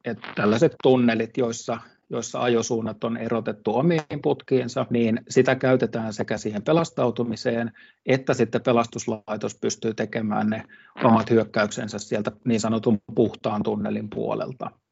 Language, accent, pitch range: Finnish, native, 115-130 Hz